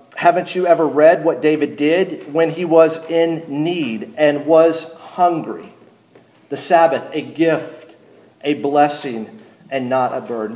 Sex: male